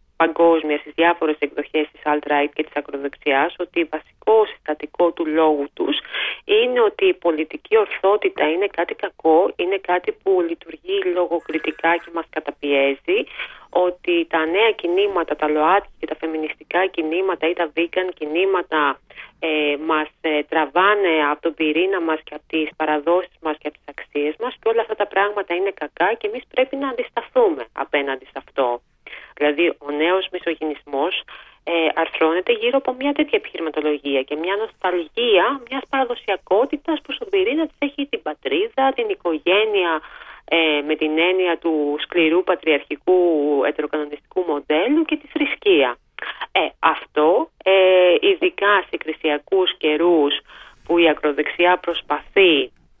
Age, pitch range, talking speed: 30-49, 155-240 Hz, 140 wpm